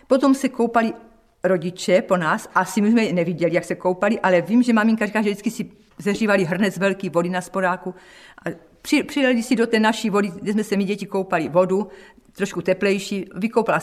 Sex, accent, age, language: female, native, 50-69, Czech